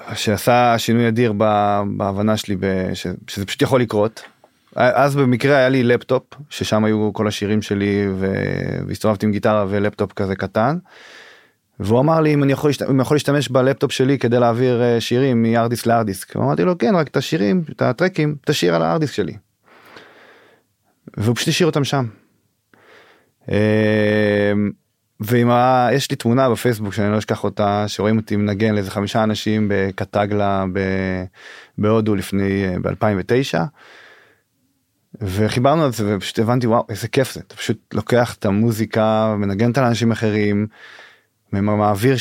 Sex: male